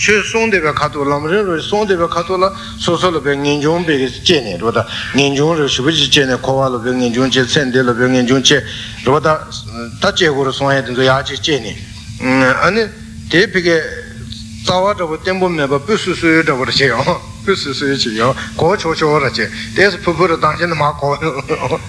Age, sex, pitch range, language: 60-79, male, 120-165 Hz, Italian